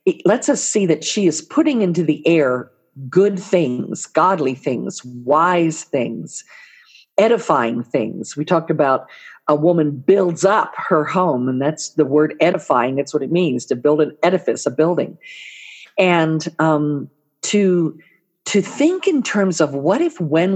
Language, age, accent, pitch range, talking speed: English, 50-69, American, 155-215 Hz, 160 wpm